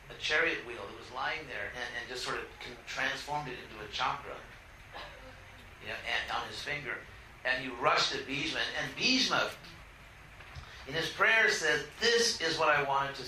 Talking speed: 185 wpm